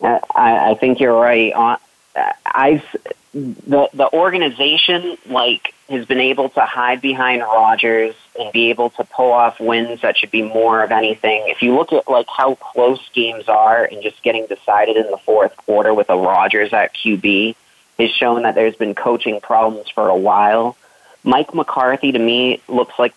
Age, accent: 30-49, American